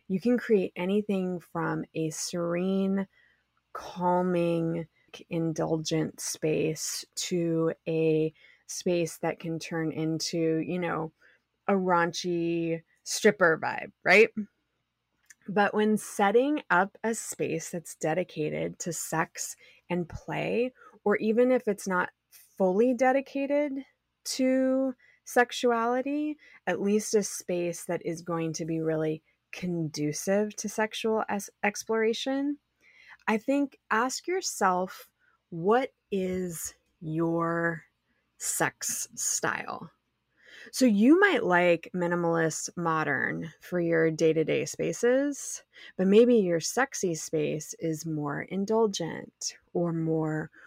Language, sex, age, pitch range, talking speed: English, female, 20-39, 165-225 Hz, 105 wpm